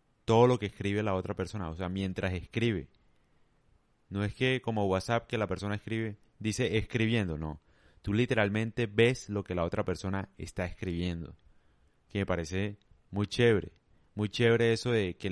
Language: Spanish